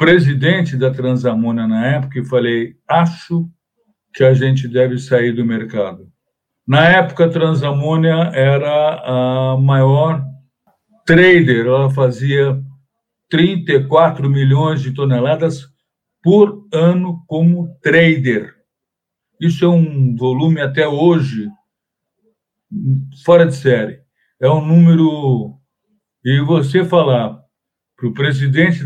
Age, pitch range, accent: 60-79, 130-170 Hz, Brazilian